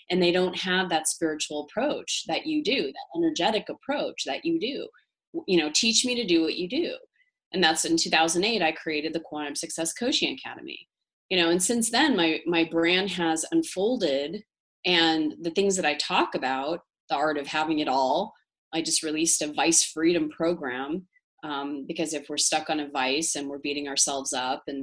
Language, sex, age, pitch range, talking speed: English, female, 30-49, 155-200 Hz, 195 wpm